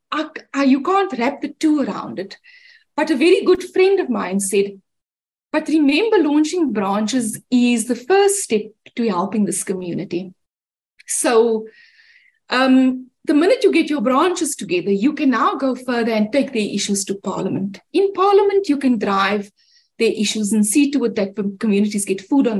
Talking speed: 165 wpm